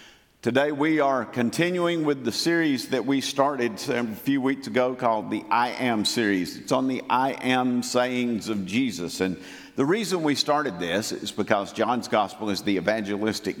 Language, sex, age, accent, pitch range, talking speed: English, male, 50-69, American, 115-140 Hz, 175 wpm